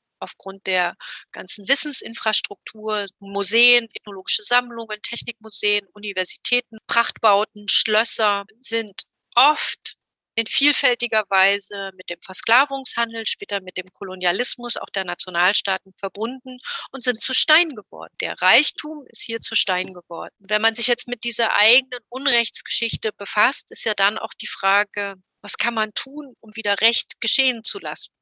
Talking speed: 135 wpm